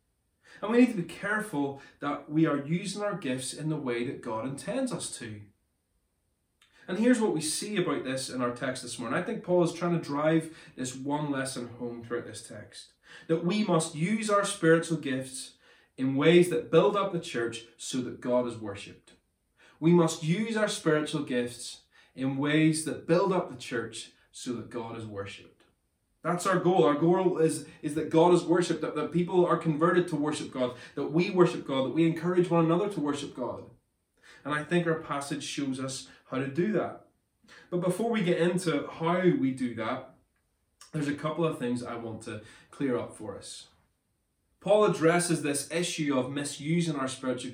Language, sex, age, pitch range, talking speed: English, male, 20-39, 125-170 Hz, 195 wpm